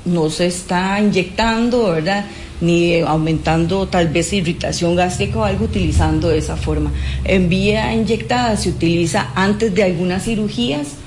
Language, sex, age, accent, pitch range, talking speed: English, female, 40-59, Colombian, 165-210 Hz, 140 wpm